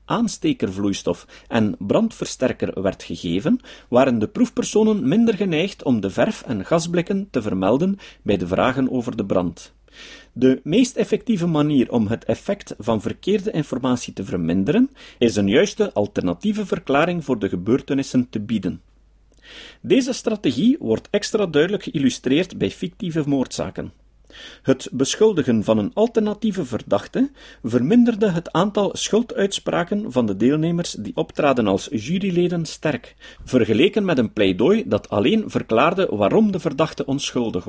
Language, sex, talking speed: Dutch, male, 130 wpm